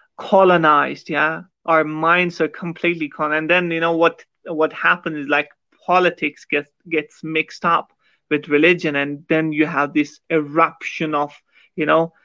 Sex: male